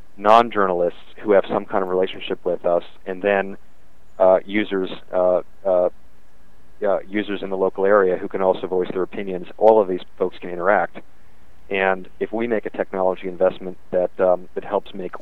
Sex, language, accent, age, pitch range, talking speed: male, English, American, 40-59, 90-95 Hz, 175 wpm